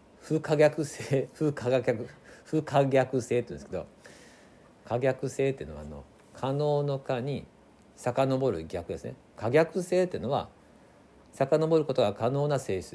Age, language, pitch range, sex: 50-69, Japanese, 110-160 Hz, male